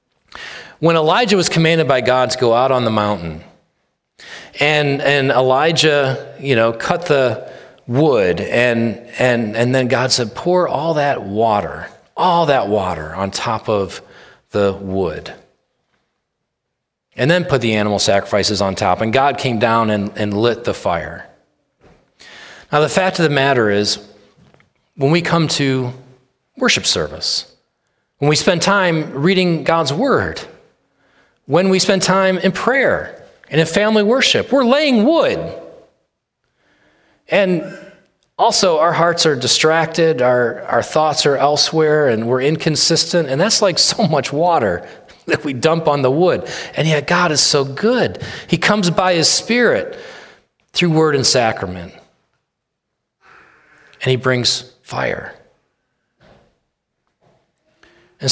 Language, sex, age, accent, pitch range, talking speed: English, male, 30-49, American, 125-175 Hz, 140 wpm